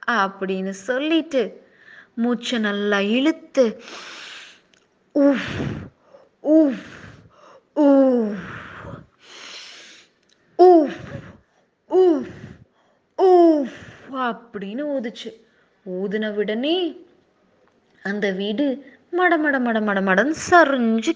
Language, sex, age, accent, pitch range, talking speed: Tamil, female, 20-39, native, 220-300 Hz, 35 wpm